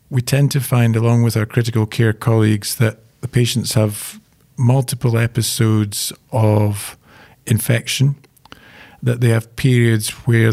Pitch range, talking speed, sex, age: 110-130 Hz, 130 wpm, male, 40-59